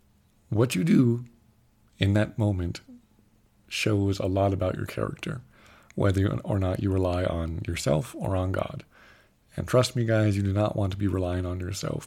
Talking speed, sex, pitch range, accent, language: 175 wpm, male, 95-115 Hz, American, English